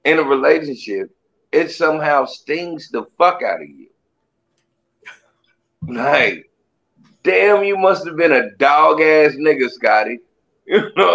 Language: English